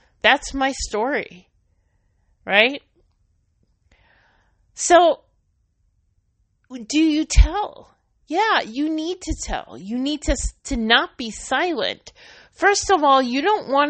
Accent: American